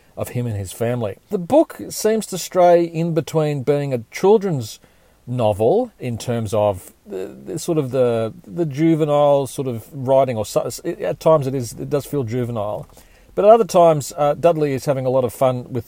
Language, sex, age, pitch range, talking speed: English, male, 40-59, 115-160 Hz, 195 wpm